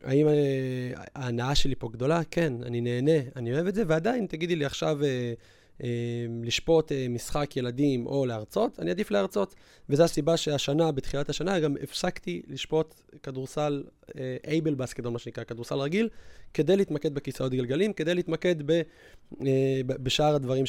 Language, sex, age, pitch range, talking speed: Hebrew, male, 20-39, 120-155 Hz, 140 wpm